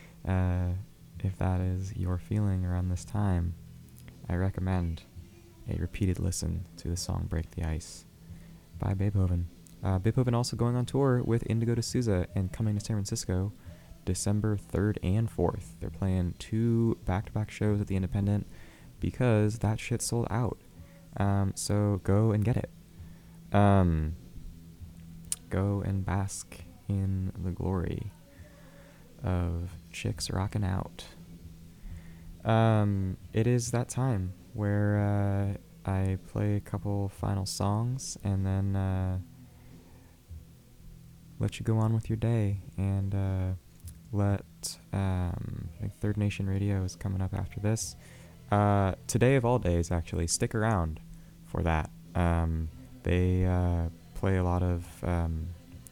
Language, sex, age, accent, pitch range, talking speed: English, male, 20-39, American, 90-105 Hz, 130 wpm